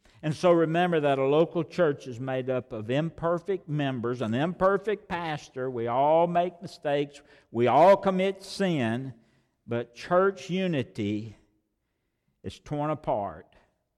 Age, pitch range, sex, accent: 60-79, 100-145 Hz, male, American